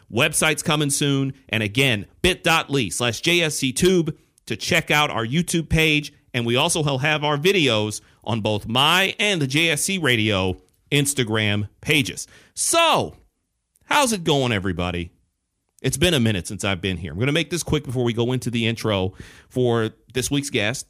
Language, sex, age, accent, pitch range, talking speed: English, male, 40-59, American, 110-145 Hz, 170 wpm